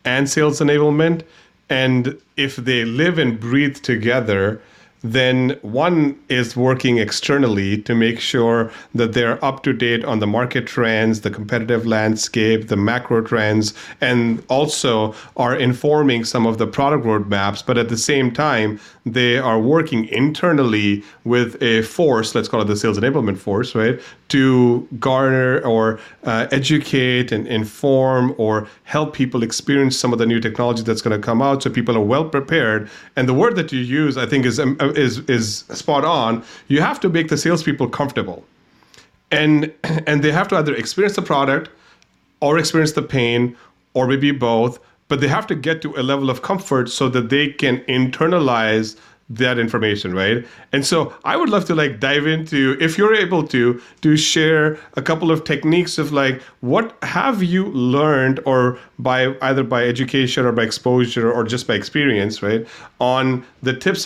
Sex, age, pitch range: male, 40-59, 115-145 Hz